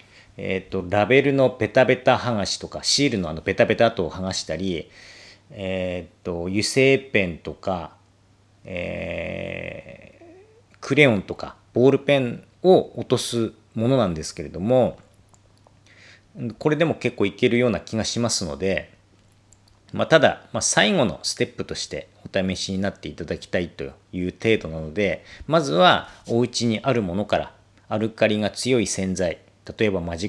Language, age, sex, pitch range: Japanese, 40-59, male, 95-120 Hz